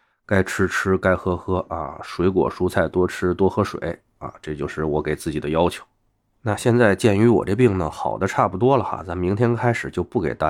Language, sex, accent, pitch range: Chinese, male, native, 85-115 Hz